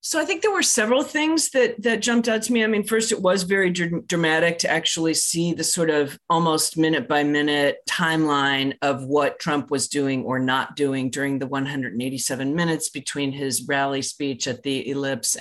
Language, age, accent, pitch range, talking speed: English, 40-59, American, 135-165 Hz, 195 wpm